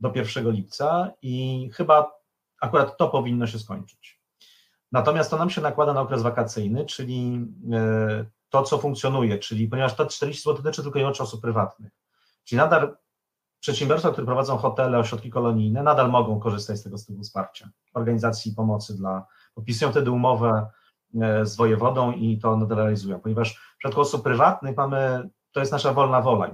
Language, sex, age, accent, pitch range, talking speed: Polish, male, 30-49, native, 110-135 Hz, 160 wpm